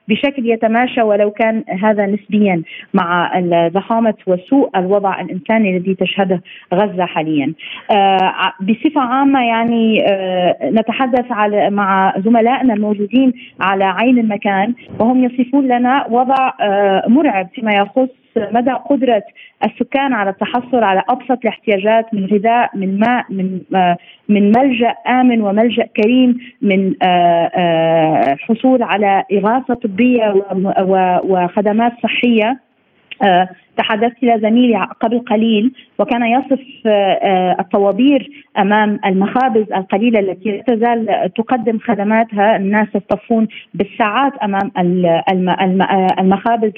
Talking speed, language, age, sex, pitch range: 105 wpm, Arabic, 30-49, female, 195-245 Hz